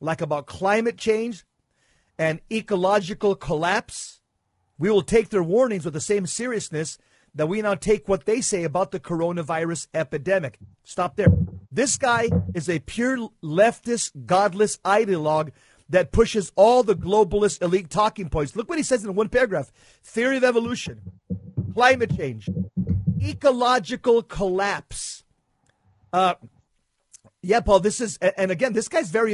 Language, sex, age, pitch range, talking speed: English, male, 50-69, 160-220 Hz, 140 wpm